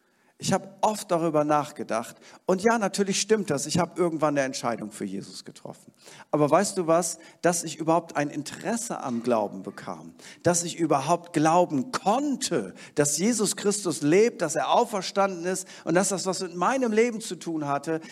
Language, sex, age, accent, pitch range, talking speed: German, male, 50-69, German, 175-235 Hz, 175 wpm